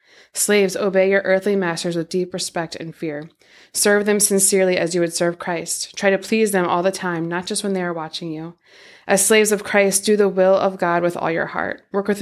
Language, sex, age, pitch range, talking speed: English, female, 20-39, 175-195 Hz, 230 wpm